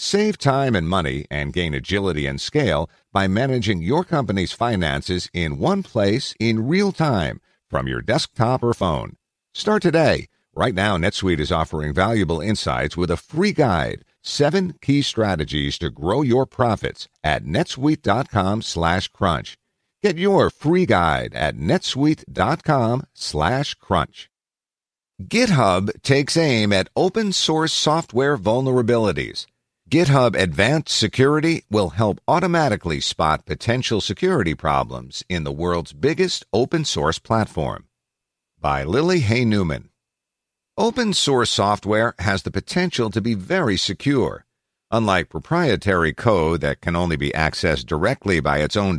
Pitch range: 85-140 Hz